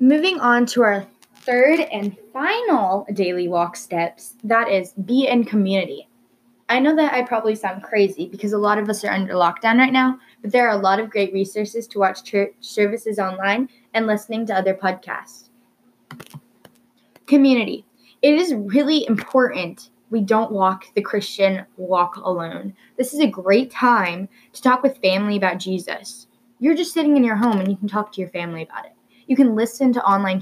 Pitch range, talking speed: 195-250 Hz, 185 wpm